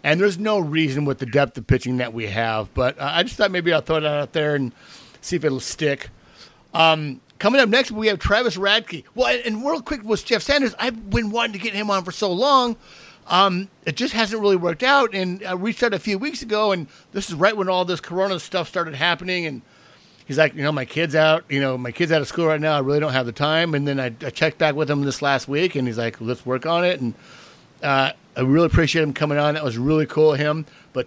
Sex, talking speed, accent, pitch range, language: male, 260 wpm, American, 145-200 Hz, English